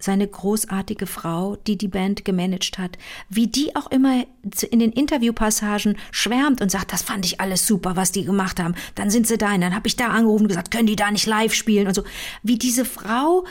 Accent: German